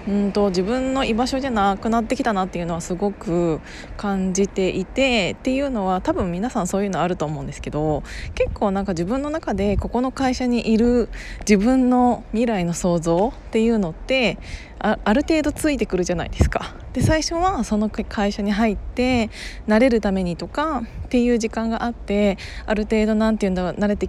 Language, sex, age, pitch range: Japanese, female, 20-39, 190-245 Hz